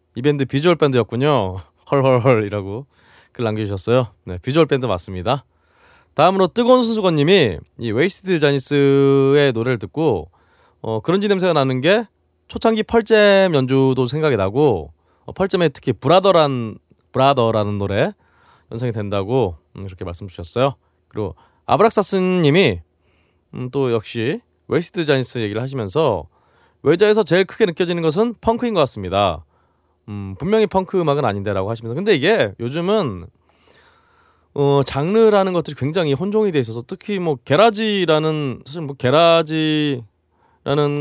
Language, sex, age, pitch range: Korean, male, 20-39, 110-185 Hz